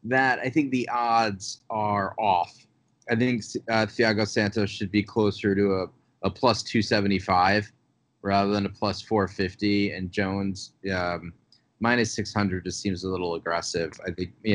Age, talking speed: 30-49, 175 wpm